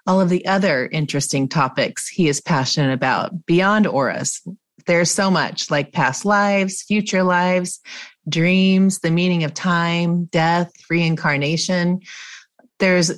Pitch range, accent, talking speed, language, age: 155-185 Hz, American, 130 wpm, English, 30-49